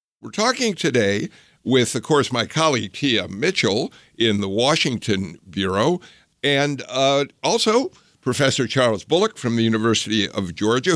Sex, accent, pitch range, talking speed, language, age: male, American, 105-145 Hz, 135 wpm, English, 60-79